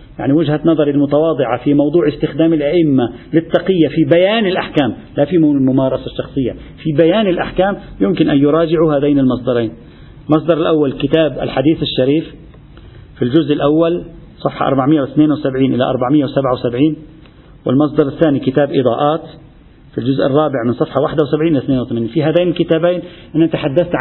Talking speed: 130 wpm